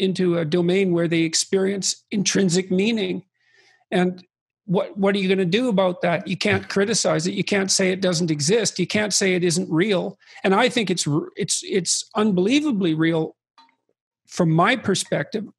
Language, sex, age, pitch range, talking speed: English, male, 50-69, 175-200 Hz, 170 wpm